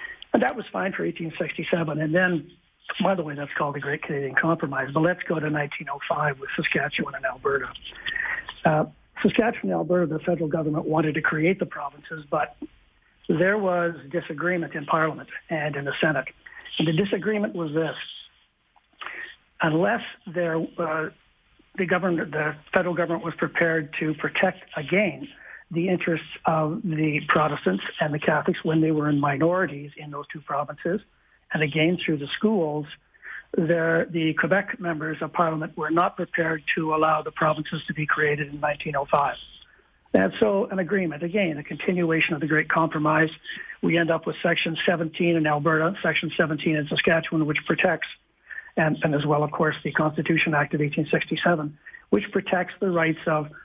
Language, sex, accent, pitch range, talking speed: English, male, American, 155-175 Hz, 165 wpm